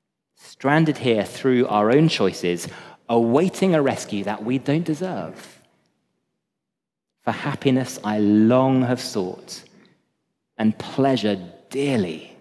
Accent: British